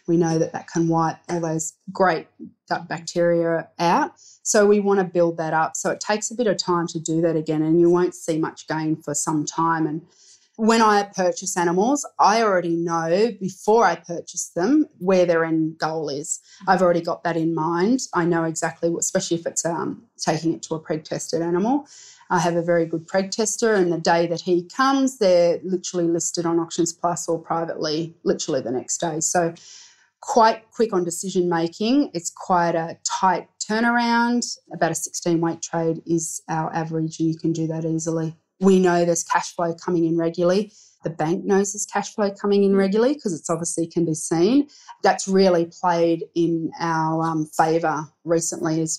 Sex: female